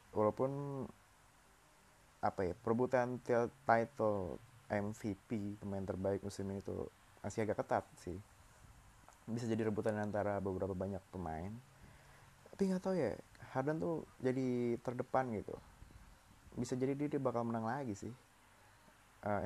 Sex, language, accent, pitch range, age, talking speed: male, Indonesian, native, 100-125 Hz, 20-39, 120 wpm